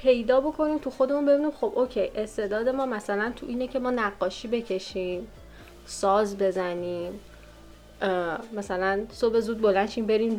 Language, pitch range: Persian, 195-255 Hz